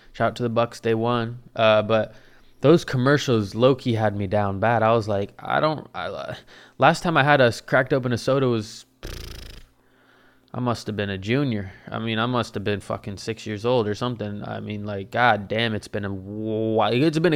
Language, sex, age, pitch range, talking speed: English, male, 20-39, 105-125 Hz, 215 wpm